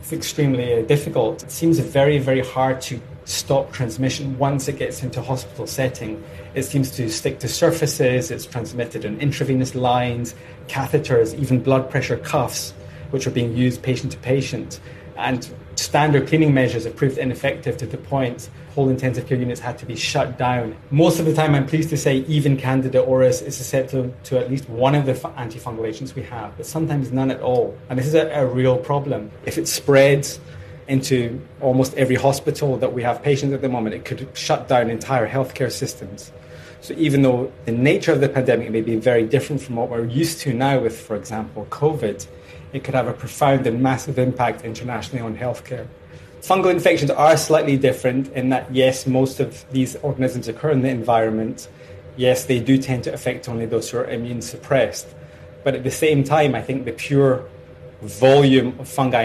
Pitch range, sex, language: 120-140 Hz, male, English